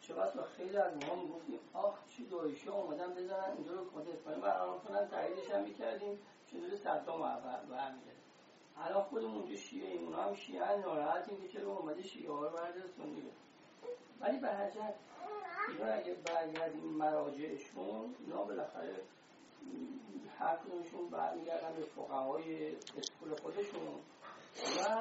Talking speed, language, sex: 110 wpm, Persian, male